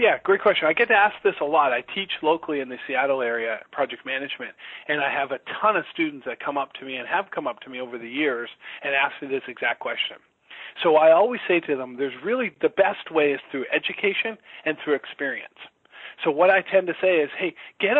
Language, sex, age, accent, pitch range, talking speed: English, male, 40-59, American, 150-195 Hz, 240 wpm